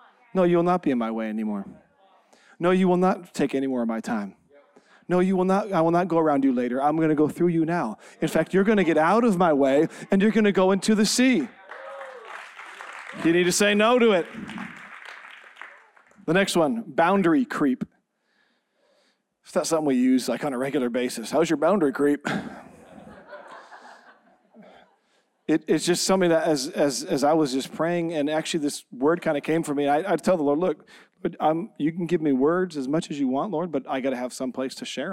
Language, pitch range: English, 150-200 Hz